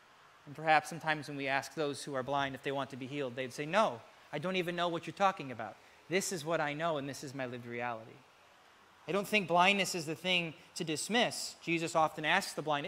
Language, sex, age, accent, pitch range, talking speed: English, male, 30-49, American, 150-185 Hz, 240 wpm